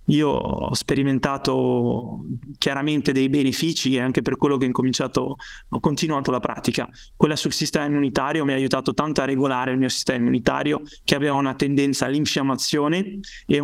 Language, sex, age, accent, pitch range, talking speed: Italian, male, 20-39, native, 135-155 Hz, 165 wpm